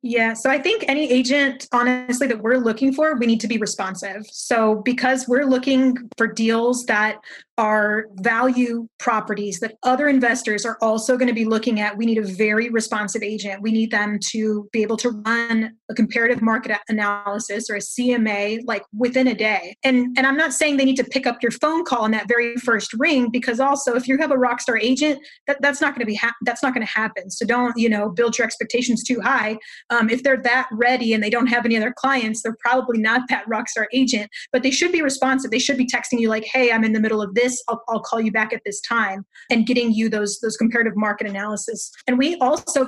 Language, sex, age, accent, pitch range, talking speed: English, female, 20-39, American, 220-255 Hz, 230 wpm